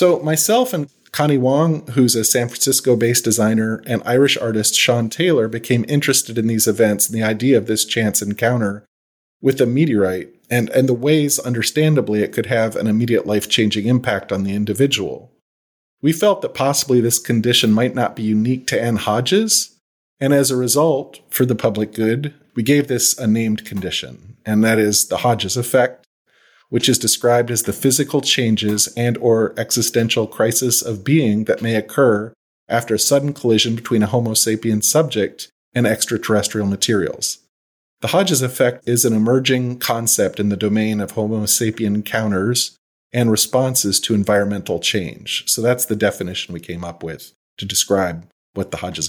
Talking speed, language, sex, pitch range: 170 wpm, English, male, 105-130 Hz